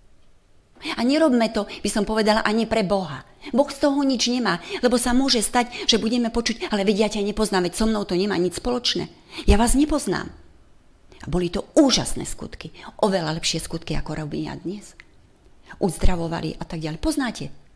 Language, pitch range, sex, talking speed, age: Slovak, 155-225 Hz, female, 170 wpm, 40-59